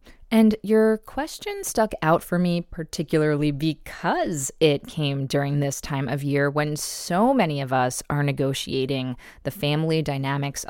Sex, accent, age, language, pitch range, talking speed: female, American, 20-39, English, 145-200 Hz, 145 wpm